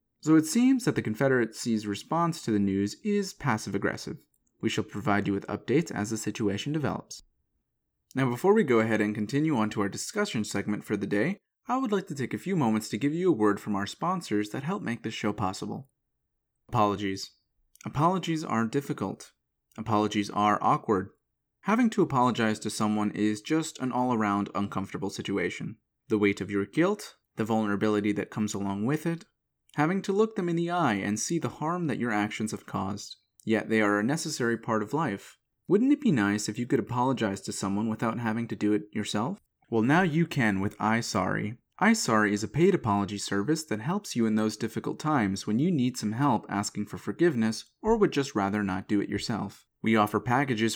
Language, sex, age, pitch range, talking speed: English, male, 30-49, 105-150 Hz, 200 wpm